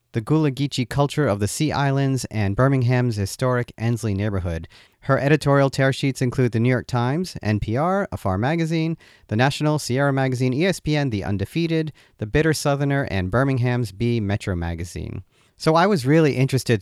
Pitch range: 105-140 Hz